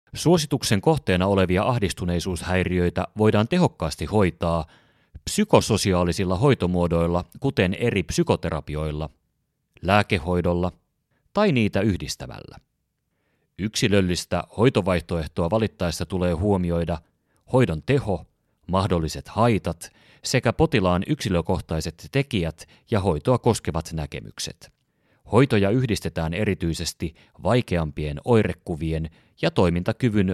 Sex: male